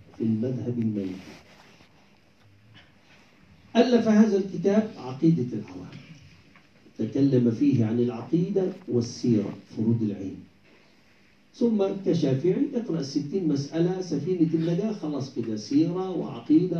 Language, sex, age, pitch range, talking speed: English, male, 50-69, 110-180 Hz, 95 wpm